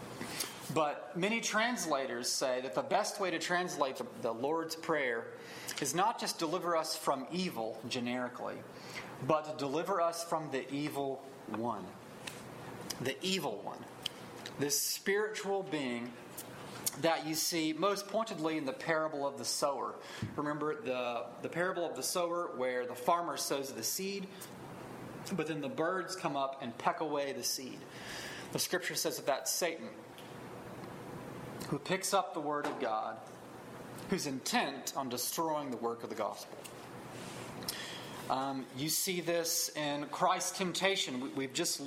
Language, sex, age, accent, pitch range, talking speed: English, male, 30-49, American, 135-175 Hz, 145 wpm